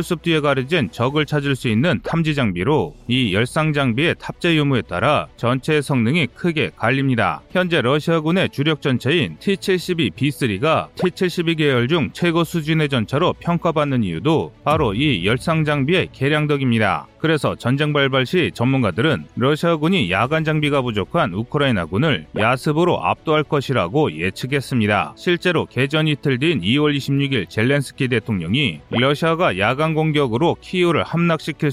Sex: male